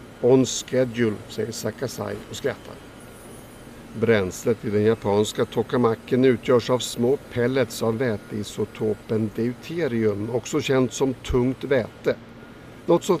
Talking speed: 115 wpm